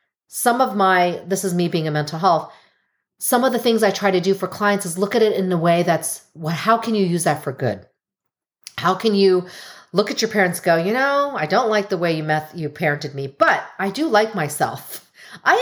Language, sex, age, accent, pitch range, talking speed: English, female, 40-59, American, 160-220 Hz, 240 wpm